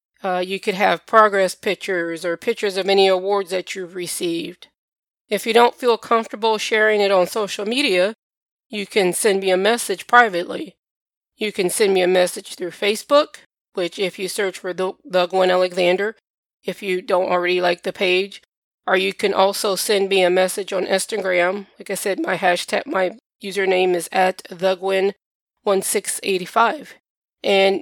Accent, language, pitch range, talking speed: American, English, 185-210 Hz, 160 wpm